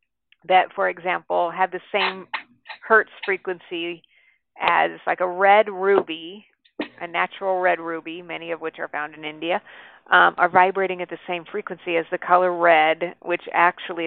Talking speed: 160 wpm